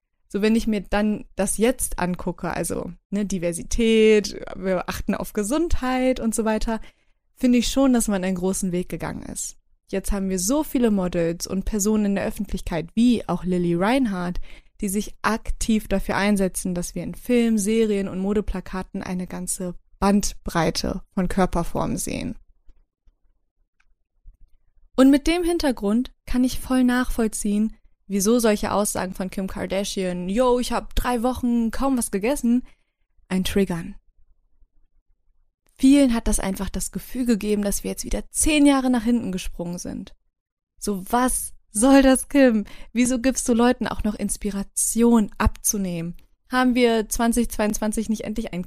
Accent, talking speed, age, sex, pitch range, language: German, 145 wpm, 20-39, female, 185-235 Hz, German